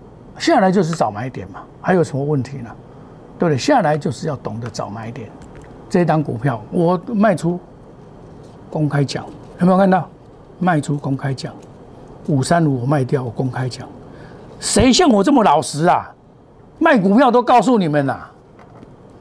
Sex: male